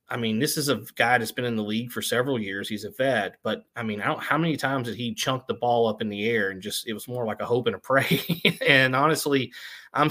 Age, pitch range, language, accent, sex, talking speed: 30-49, 115-135 Hz, English, American, male, 285 wpm